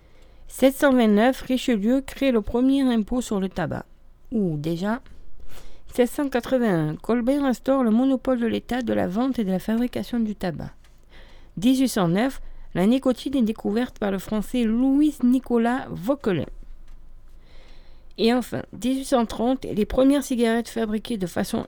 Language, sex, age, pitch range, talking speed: French, female, 40-59, 190-265 Hz, 125 wpm